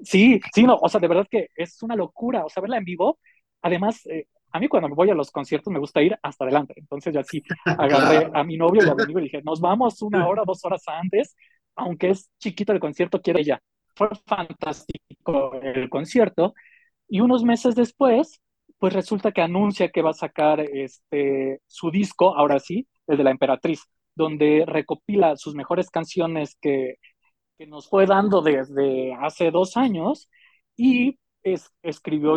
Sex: male